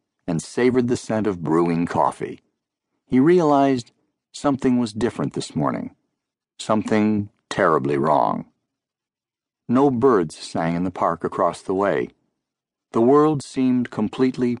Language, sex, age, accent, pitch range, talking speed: English, male, 50-69, American, 90-125 Hz, 125 wpm